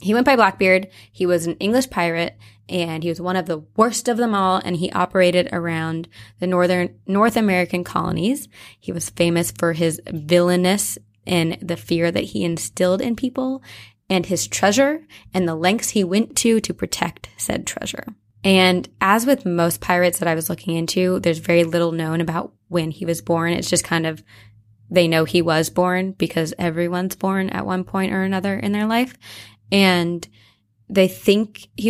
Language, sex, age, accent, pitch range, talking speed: English, female, 20-39, American, 170-200 Hz, 185 wpm